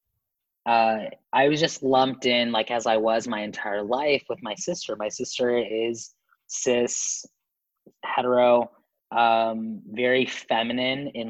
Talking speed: 135 wpm